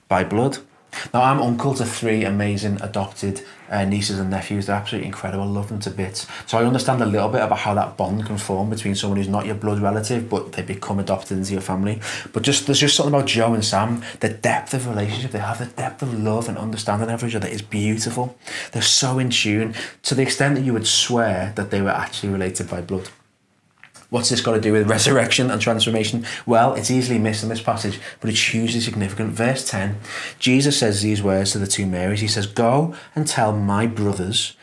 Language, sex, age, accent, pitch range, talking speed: English, male, 20-39, British, 100-120 Hz, 220 wpm